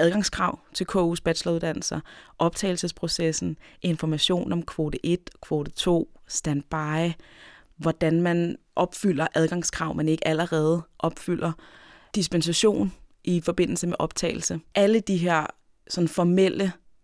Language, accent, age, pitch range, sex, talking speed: Danish, native, 20-39, 150-180 Hz, female, 105 wpm